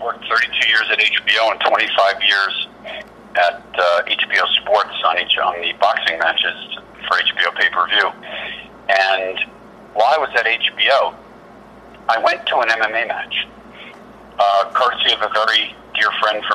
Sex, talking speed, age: male, 150 wpm, 50-69